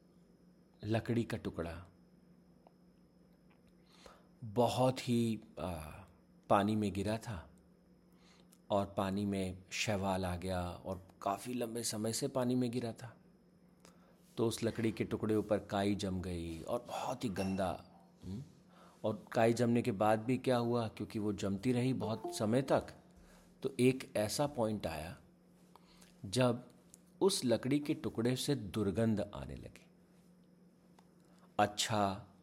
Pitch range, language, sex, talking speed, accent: 100-130 Hz, Hindi, male, 125 wpm, native